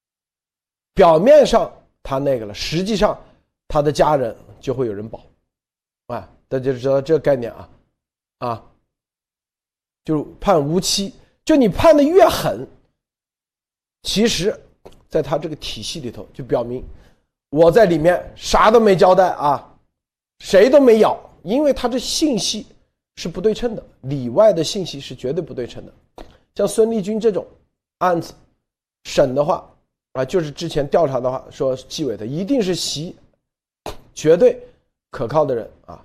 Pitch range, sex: 135-225 Hz, male